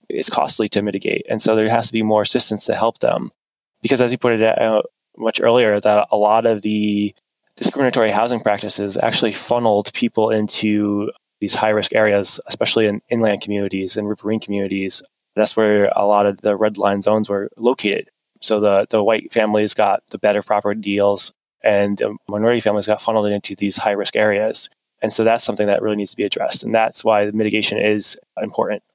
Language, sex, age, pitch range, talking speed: English, male, 20-39, 105-115 Hz, 195 wpm